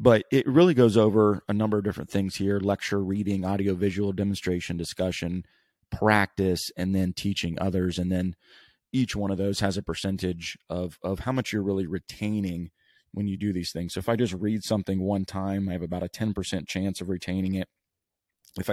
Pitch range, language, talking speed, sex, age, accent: 90-105 Hz, English, 195 wpm, male, 30-49, American